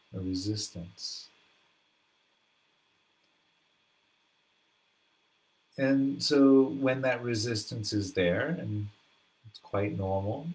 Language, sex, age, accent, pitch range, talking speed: English, male, 30-49, American, 95-115 Hz, 75 wpm